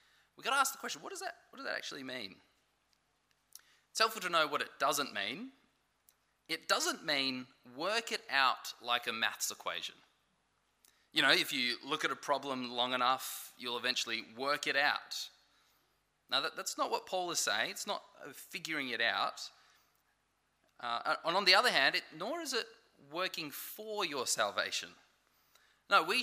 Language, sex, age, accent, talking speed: English, male, 20-39, Australian, 175 wpm